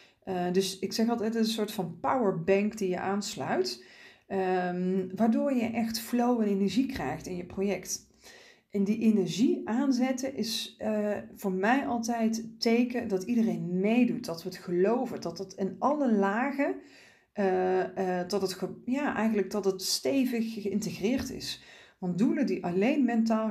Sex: female